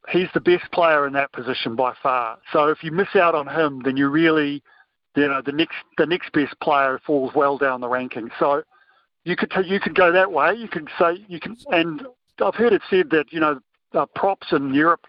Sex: male